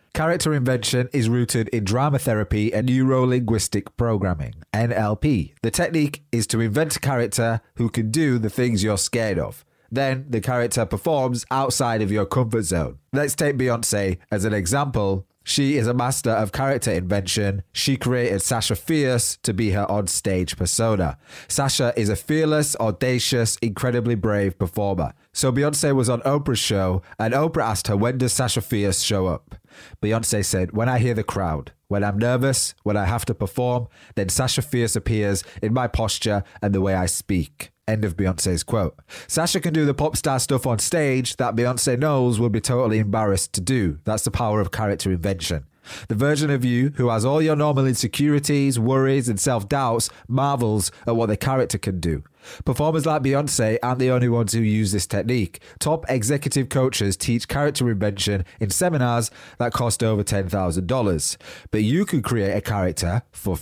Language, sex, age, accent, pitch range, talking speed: English, male, 20-39, British, 105-130 Hz, 175 wpm